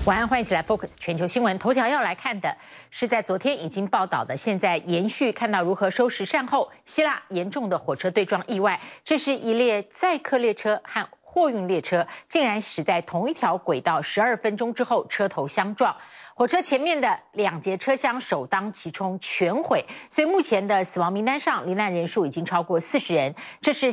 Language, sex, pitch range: Chinese, female, 180-255 Hz